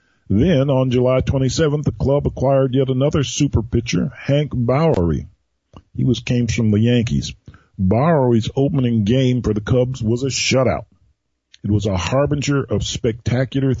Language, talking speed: English, 150 wpm